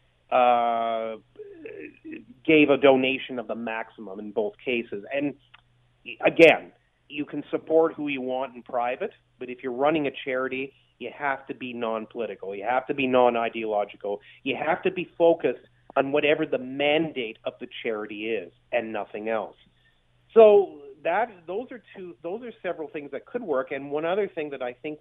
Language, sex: English, male